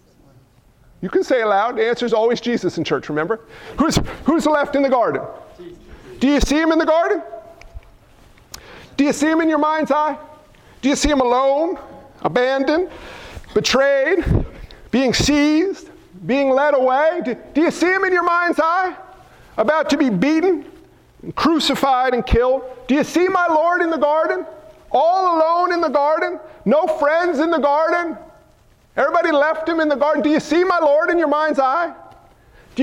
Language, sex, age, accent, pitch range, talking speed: English, male, 50-69, American, 255-330 Hz, 175 wpm